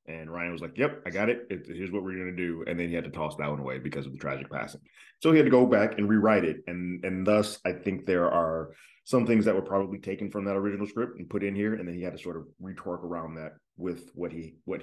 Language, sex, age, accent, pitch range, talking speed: English, male, 30-49, American, 85-105 Hz, 290 wpm